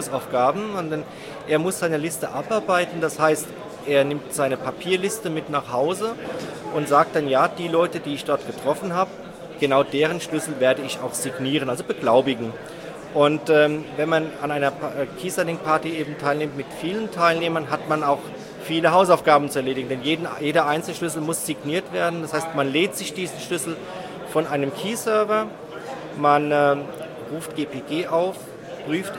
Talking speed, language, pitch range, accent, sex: 160 wpm, German, 145-175 Hz, German, male